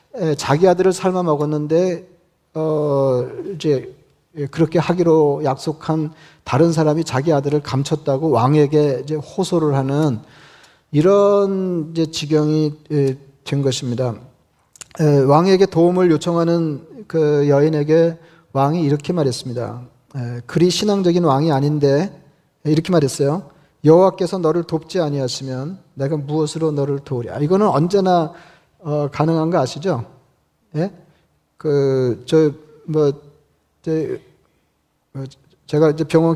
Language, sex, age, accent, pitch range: Korean, male, 40-59, native, 140-165 Hz